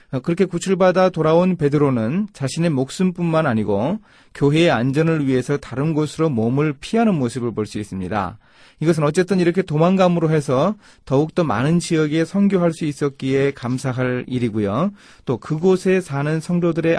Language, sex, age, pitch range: Korean, male, 30-49, 115-160 Hz